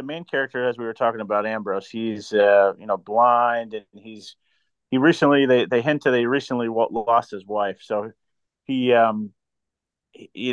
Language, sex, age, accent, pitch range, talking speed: English, male, 30-49, American, 105-125 Hz, 180 wpm